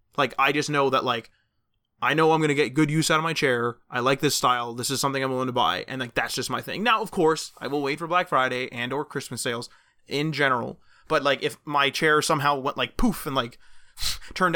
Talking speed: 255 wpm